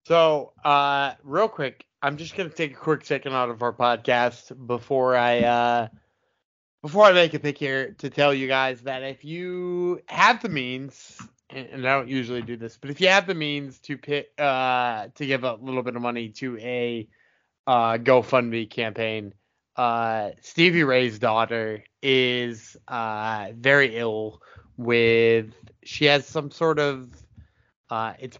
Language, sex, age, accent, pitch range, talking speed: English, male, 20-39, American, 110-135 Hz, 165 wpm